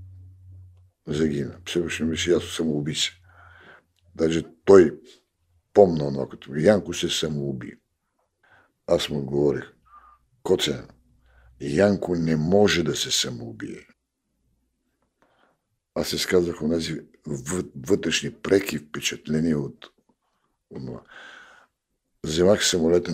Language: Bulgarian